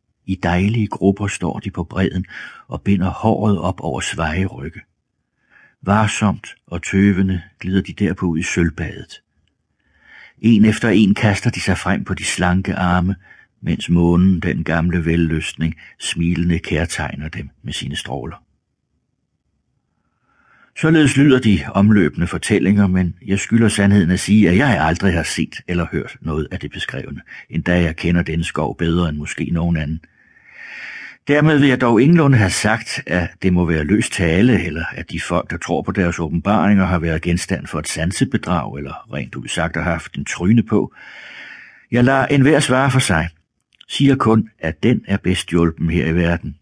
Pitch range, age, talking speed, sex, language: 85-105 Hz, 60-79, 165 wpm, male, Danish